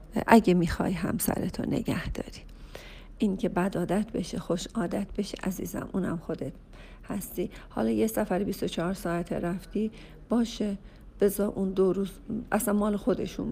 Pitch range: 175-210 Hz